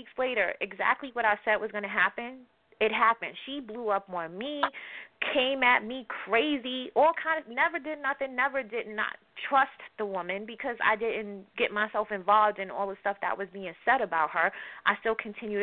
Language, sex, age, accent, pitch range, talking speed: English, female, 20-39, American, 200-265 Hz, 200 wpm